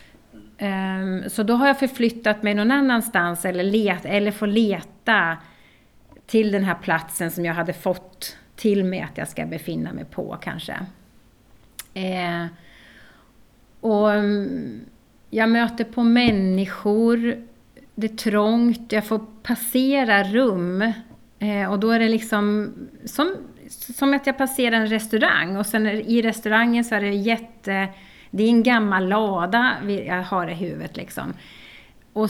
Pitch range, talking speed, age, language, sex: 185-225 Hz, 135 wpm, 30-49, Swedish, female